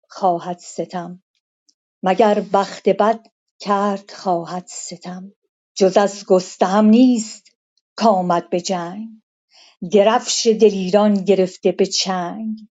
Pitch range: 190-220 Hz